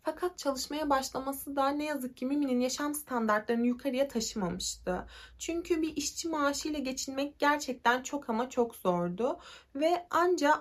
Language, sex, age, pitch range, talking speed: Turkish, female, 30-49, 230-305 Hz, 135 wpm